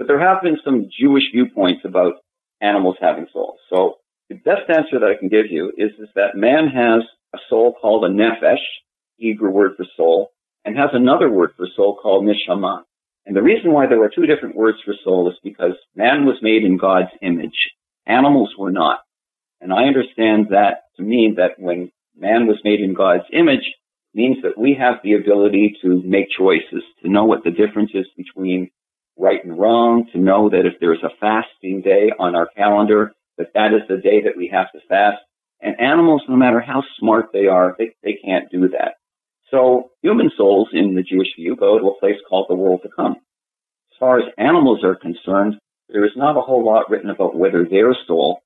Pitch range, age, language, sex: 95-125 Hz, 50-69, English, male